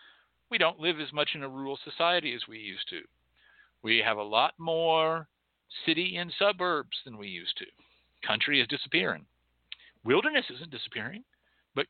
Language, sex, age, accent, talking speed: English, male, 50-69, American, 160 wpm